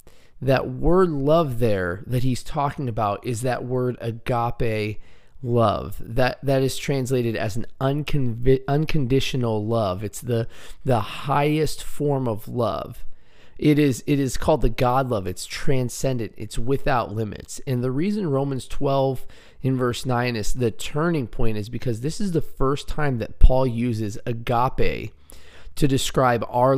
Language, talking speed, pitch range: English, 150 wpm, 110-135 Hz